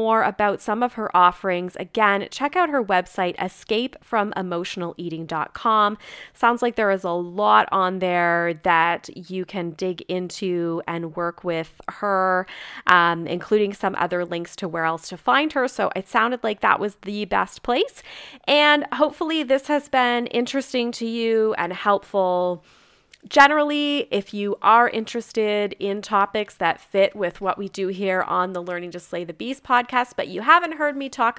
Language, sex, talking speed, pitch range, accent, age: English, female, 170 wpm, 180-245 Hz, American, 20-39